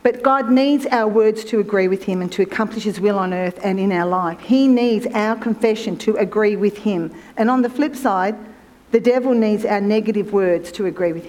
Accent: Australian